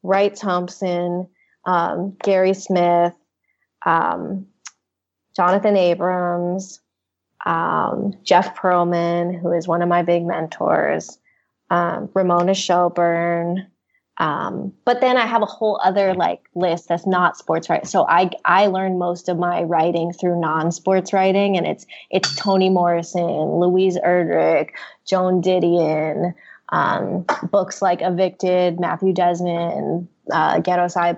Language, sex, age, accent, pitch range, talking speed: English, female, 20-39, American, 170-190 Hz, 125 wpm